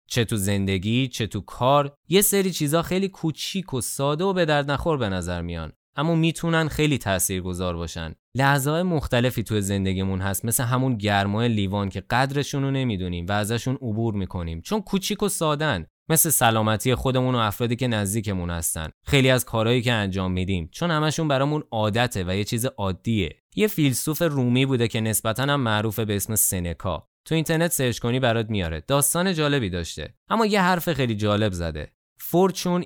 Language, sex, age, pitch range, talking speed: Persian, male, 20-39, 100-140 Hz, 175 wpm